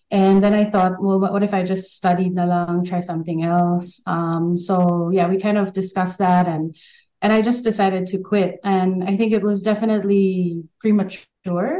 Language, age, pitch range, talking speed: Filipino, 30-49, 180-205 Hz, 185 wpm